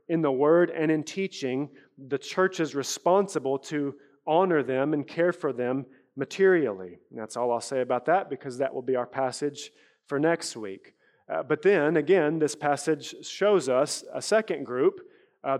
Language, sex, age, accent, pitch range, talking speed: English, male, 30-49, American, 130-170 Hz, 175 wpm